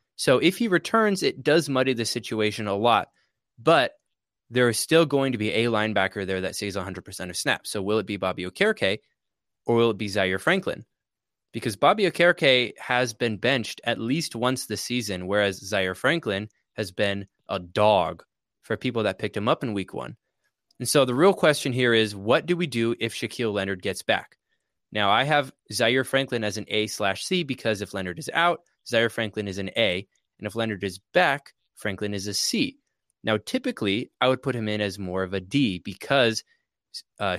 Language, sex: English, male